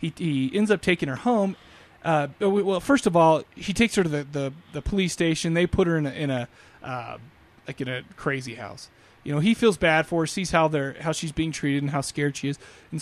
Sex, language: male, English